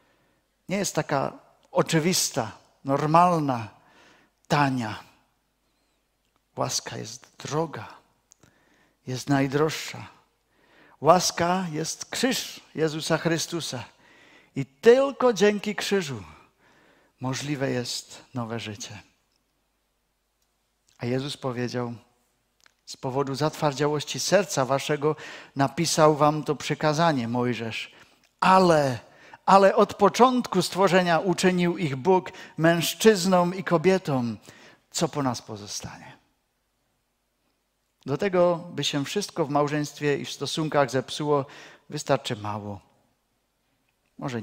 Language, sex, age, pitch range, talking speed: Czech, male, 50-69, 130-170 Hz, 90 wpm